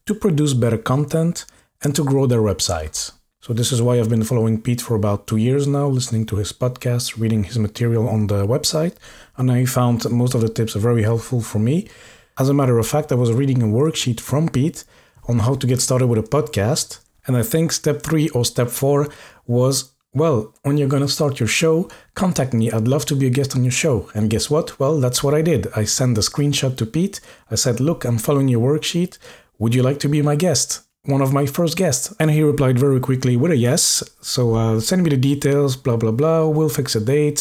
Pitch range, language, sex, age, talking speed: 115-145 Hz, English, male, 40-59, 235 wpm